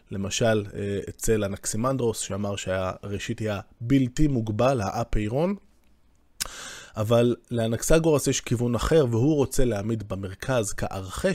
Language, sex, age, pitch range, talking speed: Hebrew, male, 20-39, 110-135 Hz, 100 wpm